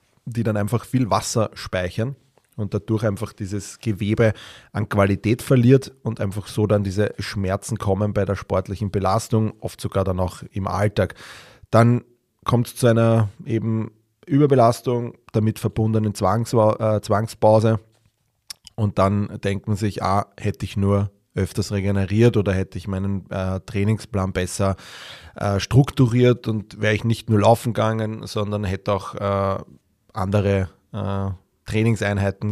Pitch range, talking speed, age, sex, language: 100-115 Hz, 140 wpm, 30-49, male, German